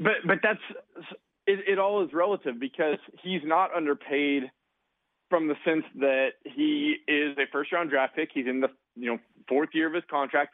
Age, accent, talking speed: 30-49, American, 190 wpm